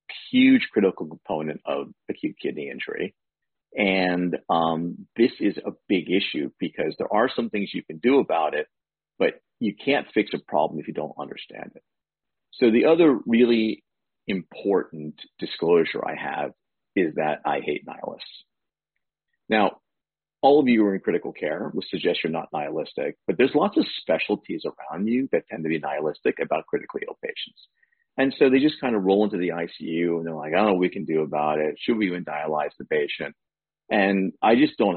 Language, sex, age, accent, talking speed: English, male, 40-59, American, 190 wpm